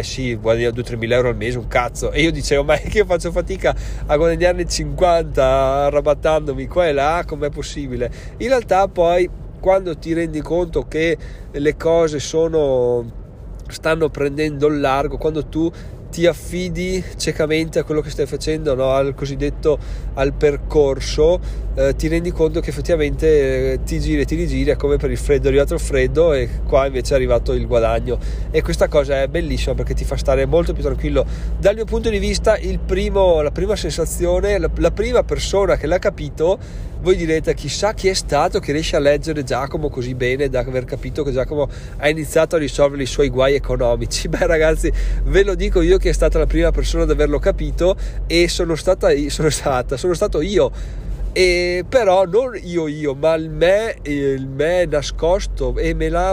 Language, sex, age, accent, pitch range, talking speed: Italian, male, 20-39, native, 135-170 Hz, 190 wpm